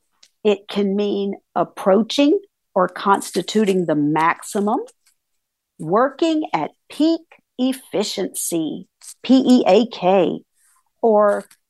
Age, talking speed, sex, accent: 50-69, 70 wpm, female, American